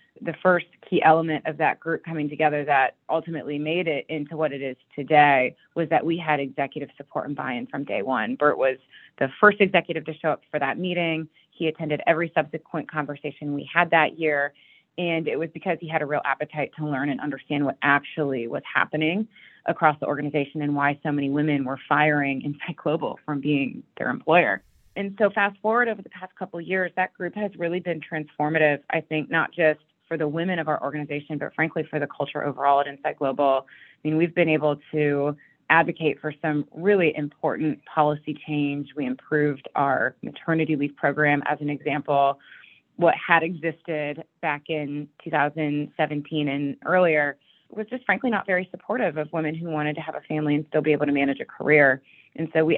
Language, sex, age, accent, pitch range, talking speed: English, female, 30-49, American, 145-165 Hz, 195 wpm